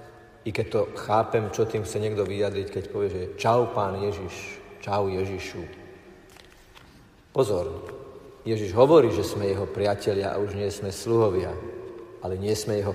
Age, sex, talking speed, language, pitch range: 50-69, male, 155 wpm, Slovak, 105-130 Hz